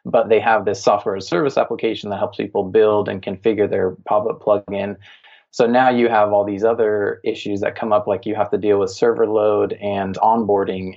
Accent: American